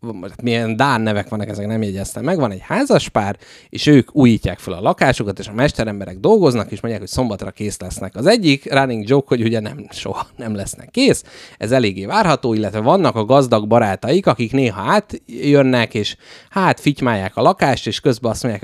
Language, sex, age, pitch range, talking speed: Hungarian, male, 30-49, 105-135 Hz, 190 wpm